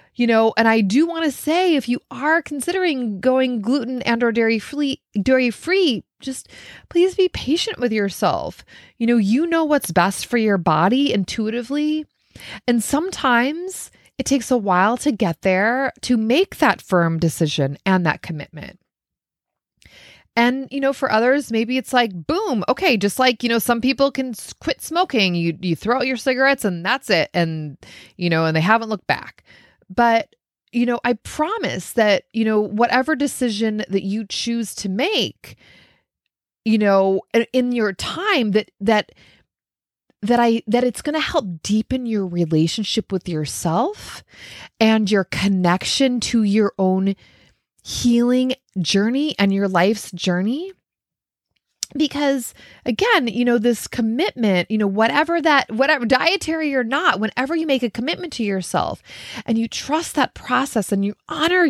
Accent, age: American, 20-39